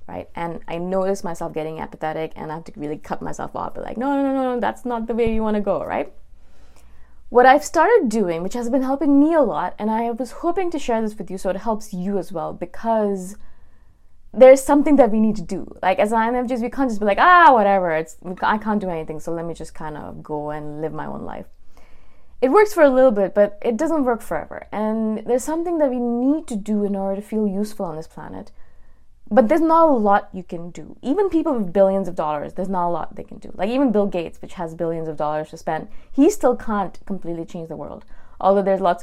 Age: 20-39